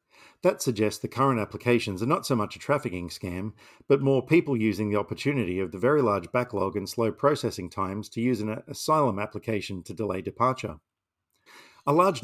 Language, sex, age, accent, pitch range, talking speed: English, male, 50-69, Australian, 100-125 Hz, 180 wpm